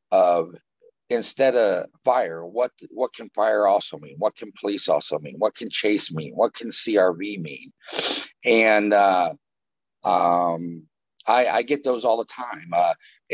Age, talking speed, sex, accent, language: 50-69, 155 wpm, male, American, English